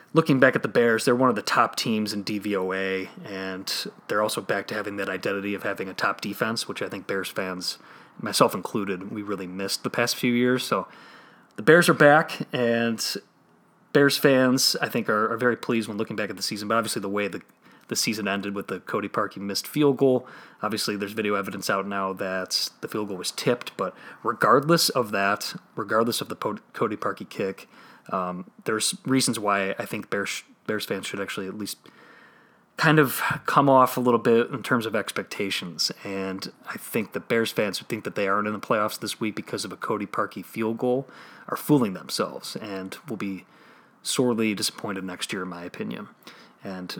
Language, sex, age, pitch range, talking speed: English, male, 30-49, 100-130 Hz, 205 wpm